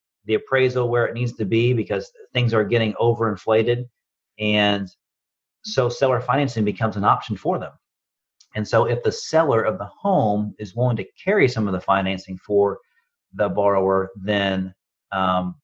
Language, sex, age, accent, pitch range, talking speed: English, male, 40-59, American, 100-120 Hz, 160 wpm